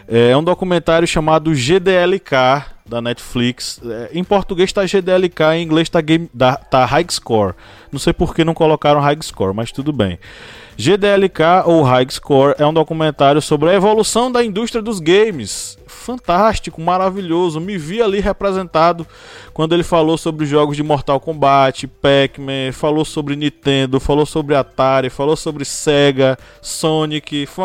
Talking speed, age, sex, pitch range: 150 wpm, 20-39, male, 130-175 Hz